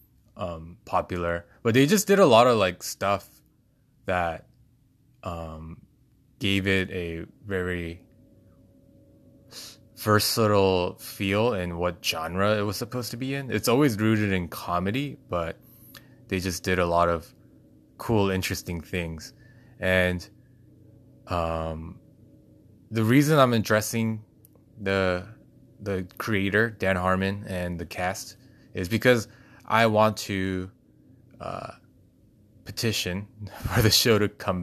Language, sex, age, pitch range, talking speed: English, male, 20-39, 90-115 Hz, 120 wpm